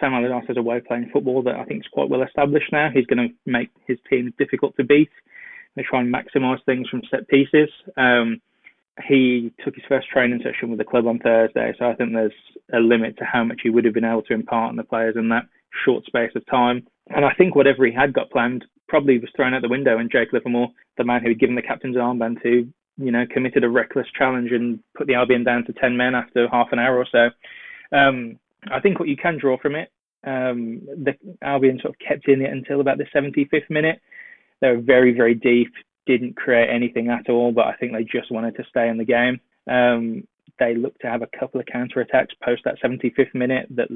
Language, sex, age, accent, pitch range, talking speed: English, male, 20-39, British, 120-135 Hz, 240 wpm